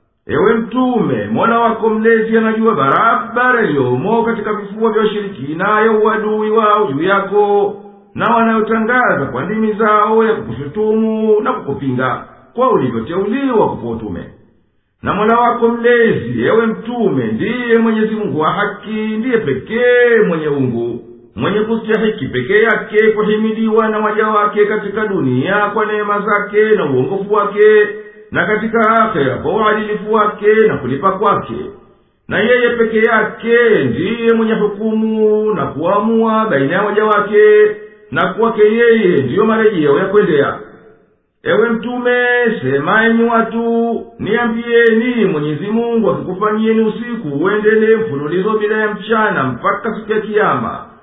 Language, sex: English, male